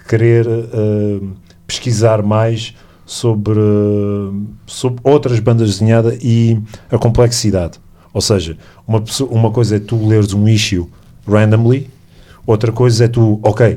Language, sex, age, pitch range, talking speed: English, male, 40-59, 100-115 Hz, 120 wpm